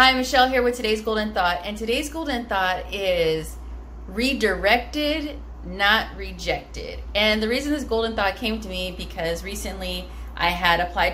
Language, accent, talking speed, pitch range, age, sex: English, American, 155 wpm, 175-235 Hz, 30-49, female